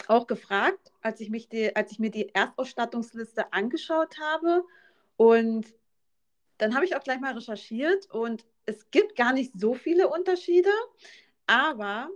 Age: 30-49